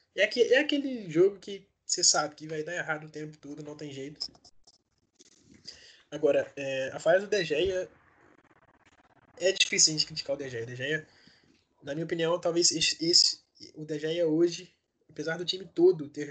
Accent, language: Brazilian, Portuguese